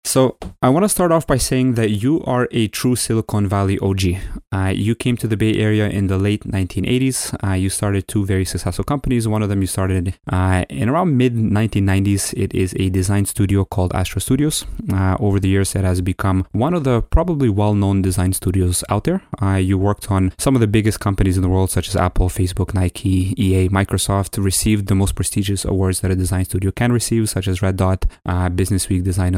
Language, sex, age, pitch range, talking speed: English, male, 20-39, 95-110 Hz, 215 wpm